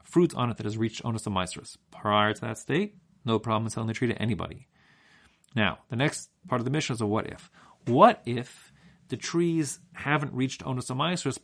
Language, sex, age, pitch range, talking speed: English, male, 40-59, 110-160 Hz, 190 wpm